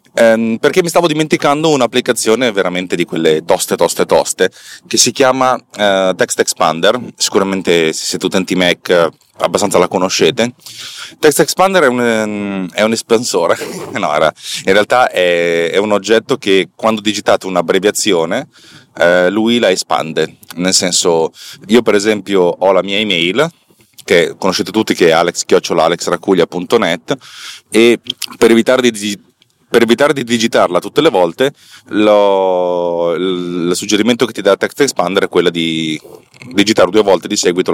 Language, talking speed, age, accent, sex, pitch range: Italian, 145 wpm, 30-49, native, male, 95-120 Hz